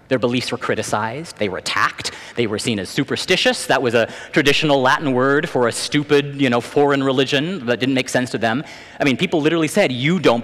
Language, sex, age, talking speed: English, male, 30-49, 220 wpm